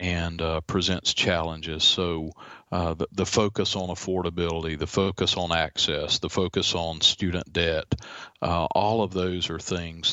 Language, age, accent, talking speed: English, 40-59, American, 155 wpm